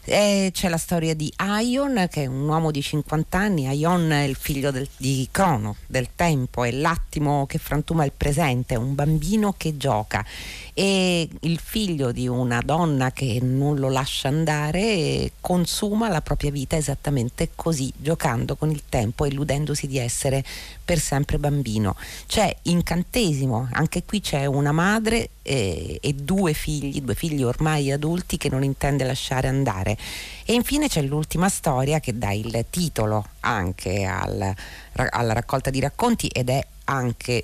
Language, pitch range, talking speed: Italian, 125-160 Hz, 150 wpm